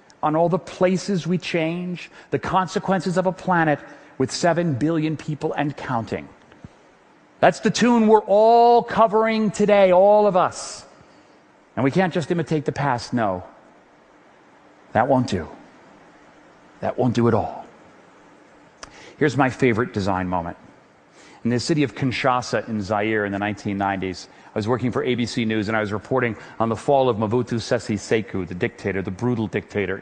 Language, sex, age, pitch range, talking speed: English, male, 40-59, 115-175 Hz, 160 wpm